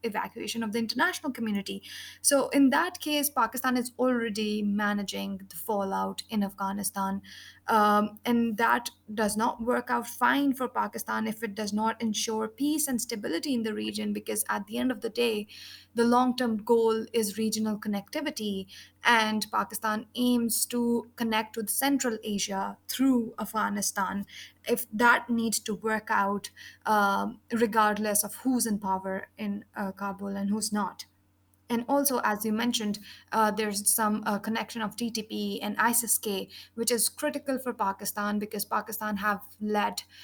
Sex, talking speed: female, 155 wpm